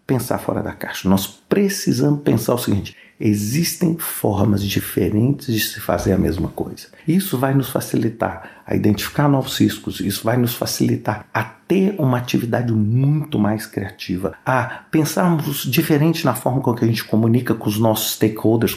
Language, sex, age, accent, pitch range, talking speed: Portuguese, male, 50-69, Brazilian, 105-170 Hz, 160 wpm